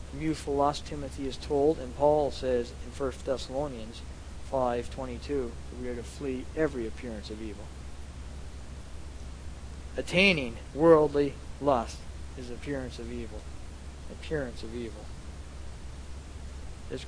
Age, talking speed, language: 50-69, 110 wpm, English